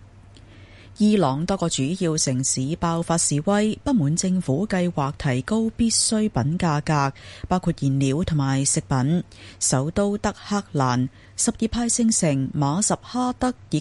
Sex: female